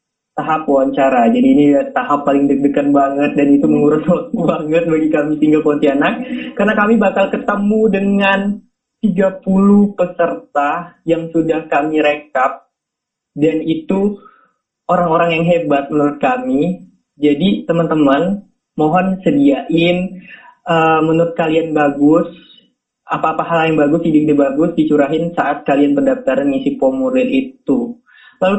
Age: 20-39